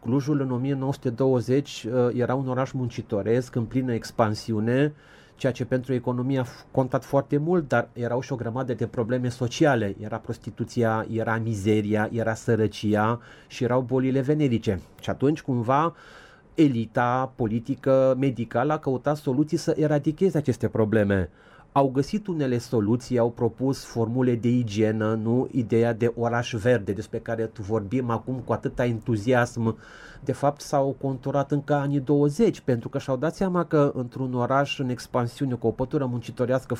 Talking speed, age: 150 wpm, 30-49